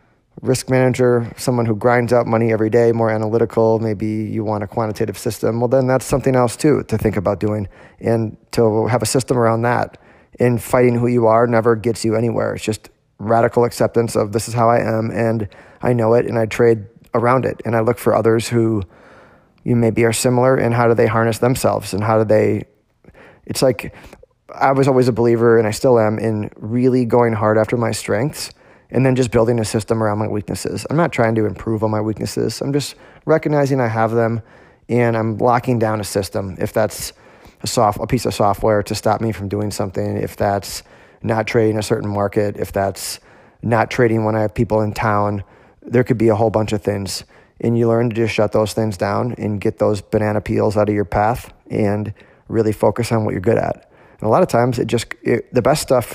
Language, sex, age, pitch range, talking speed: English, male, 20-39, 105-120 Hz, 215 wpm